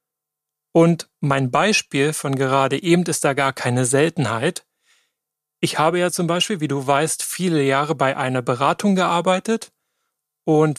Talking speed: 145 wpm